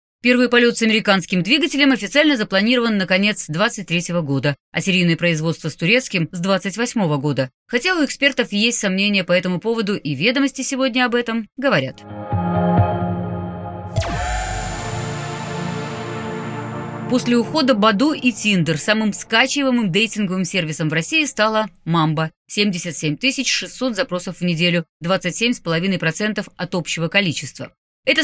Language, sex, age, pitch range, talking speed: Russian, female, 30-49, 160-225 Hz, 120 wpm